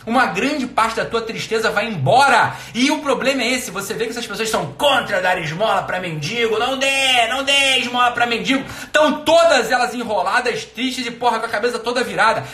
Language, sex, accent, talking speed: Portuguese, male, Brazilian, 205 wpm